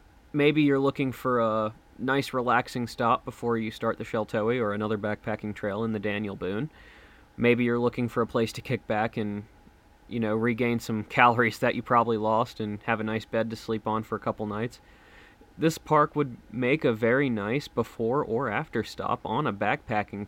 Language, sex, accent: English, male, American